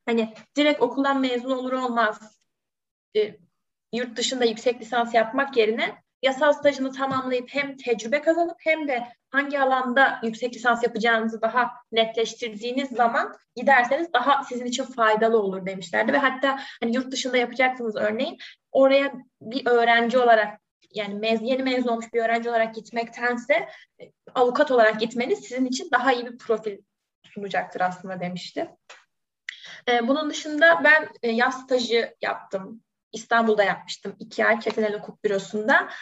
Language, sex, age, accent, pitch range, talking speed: Turkish, female, 20-39, native, 225-275 Hz, 130 wpm